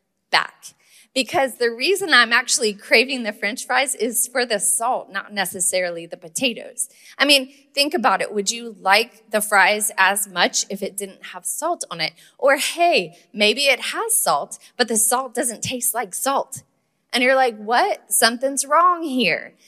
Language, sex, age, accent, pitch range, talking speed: English, female, 20-39, American, 220-285 Hz, 175 wpm